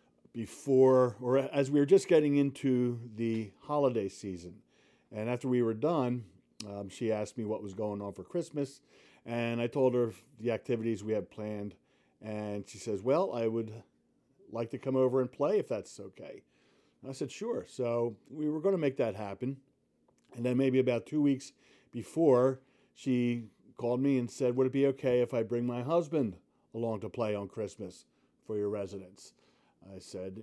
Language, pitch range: English, 110-130 Hz